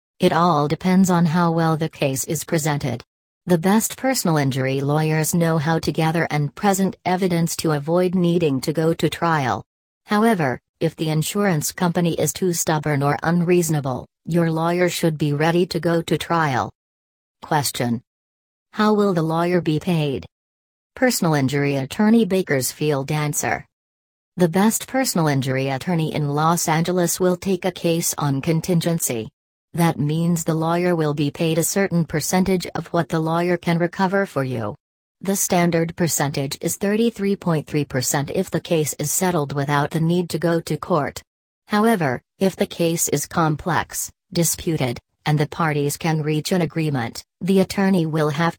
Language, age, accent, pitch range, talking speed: English, 40-59, American, 145-180 Hz, 155 wpm